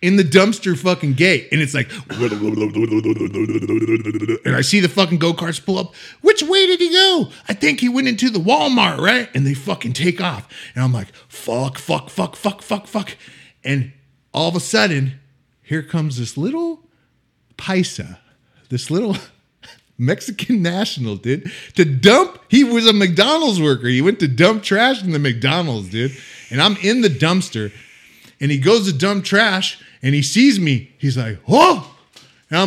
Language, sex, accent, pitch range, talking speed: English, male, American, 140-225 Hz, 175 wpm